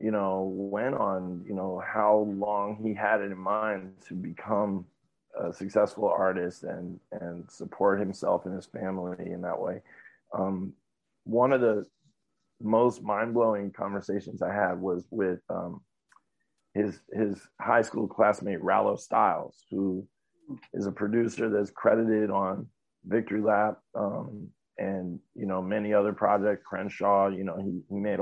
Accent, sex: American, male